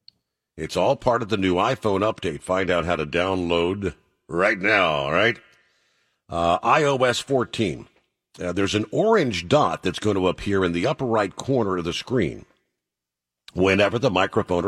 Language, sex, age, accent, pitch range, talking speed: English, male, 50-69, American, 80-105 Hz, 165 wpm